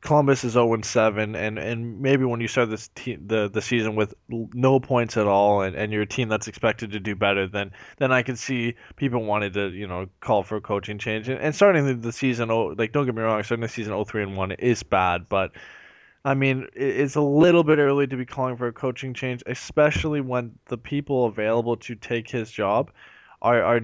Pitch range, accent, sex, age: 105-125 Hz, American, male, 20-39